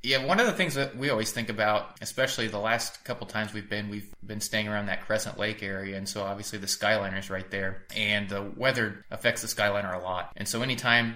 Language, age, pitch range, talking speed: English, 20-39, 100-110 Hz, 240 wpm